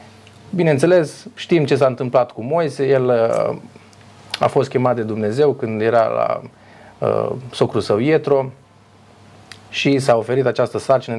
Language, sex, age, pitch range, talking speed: Romanian, male, 30-49, 110-140 Hz, 130 wpm